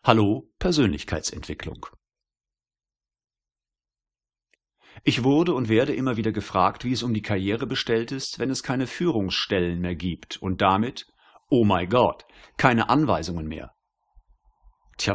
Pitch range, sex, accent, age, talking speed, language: 95-125 Hz, male, German, 50-69, 125 wpm, German